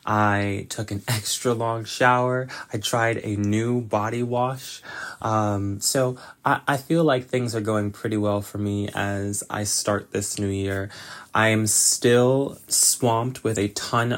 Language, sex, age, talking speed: English, male, 20-39, 160 wpm